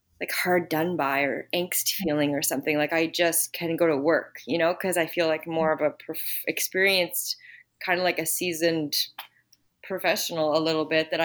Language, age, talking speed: English, 20-39, 195 wpm